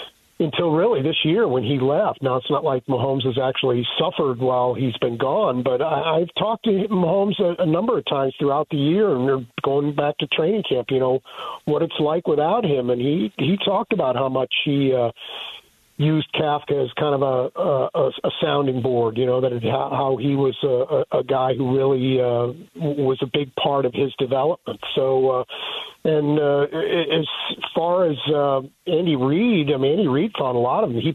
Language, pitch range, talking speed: English, 130-155 Hz, 210 wpm